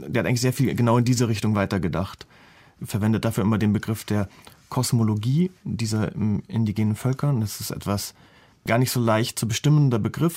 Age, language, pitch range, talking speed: 30-49, German, 110-130 Hz, 180 wpm